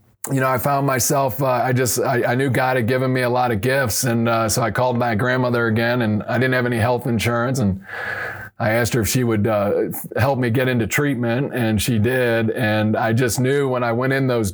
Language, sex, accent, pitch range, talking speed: English, male, American, 115-130 Hz, 245 wpm